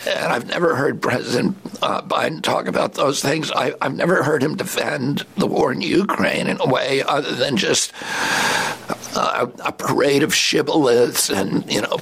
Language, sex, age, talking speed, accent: English, male, 60-79, 175 wpm, American